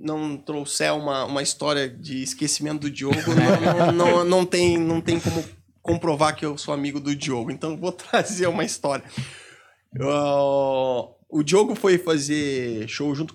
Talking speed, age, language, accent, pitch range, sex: 160 wpm, 20-39, Portuguese, Brazilian, 130-165 Hz, male